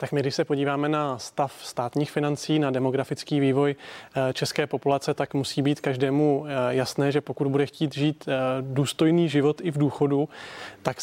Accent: native